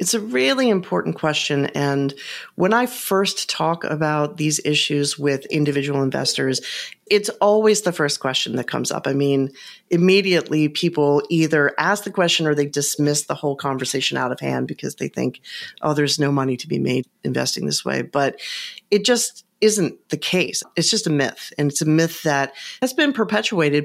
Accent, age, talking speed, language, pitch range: American, 40-59, 180 wpm, English, 145-205 Hz